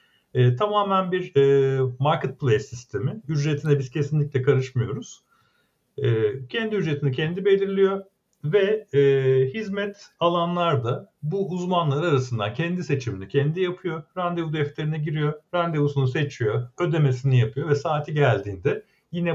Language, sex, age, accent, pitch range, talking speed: Turkish, male, 50-69, native, 125-170 Hz, 115 wpm